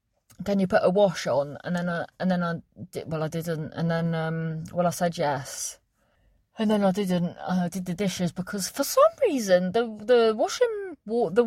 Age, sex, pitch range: 30-49, female, 170-225 Hz